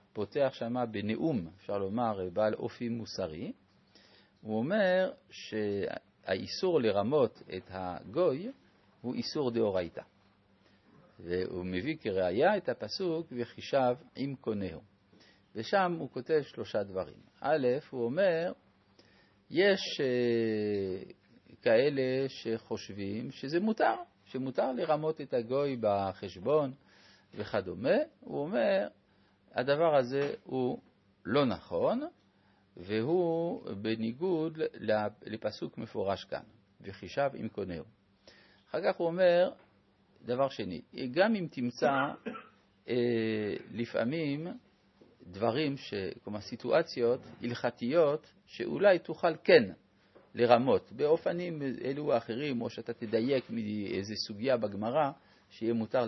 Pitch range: 105-145 Hz